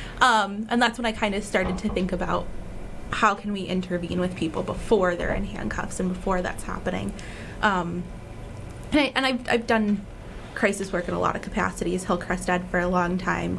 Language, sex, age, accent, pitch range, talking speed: English, female, 20-39, American, 180-220 Hz, 195 wpm